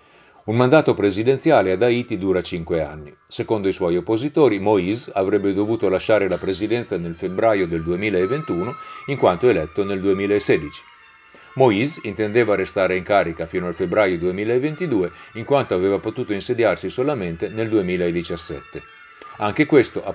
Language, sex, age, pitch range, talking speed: Italian, male, 50-69, 90-125 Hz, 140 wpm